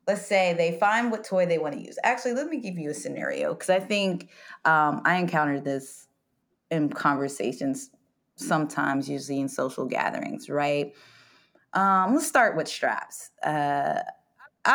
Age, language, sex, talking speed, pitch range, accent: 20-39, English, female, 155 wpm, 145-205 Hz, American